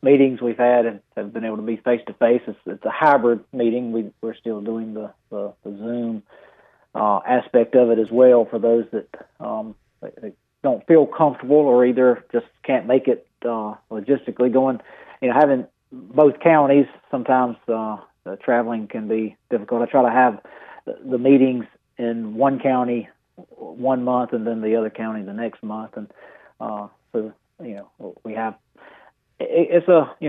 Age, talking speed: 40-59, 170 wpm